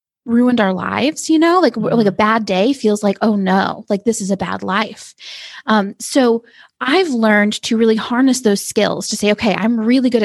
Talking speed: 205 wpm